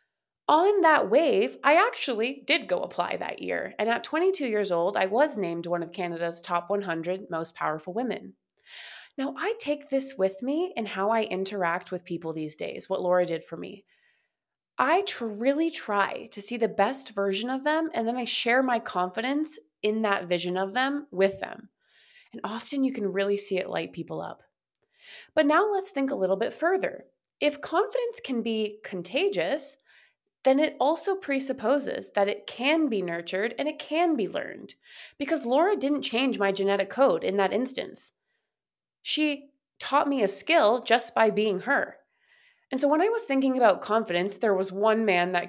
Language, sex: English, female